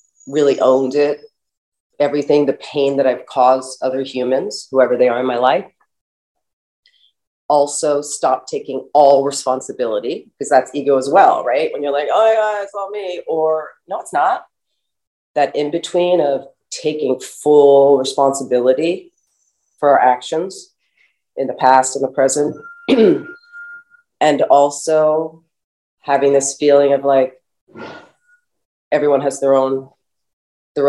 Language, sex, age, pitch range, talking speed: English, female, 30-49, 140-180 Hz, 130 wpm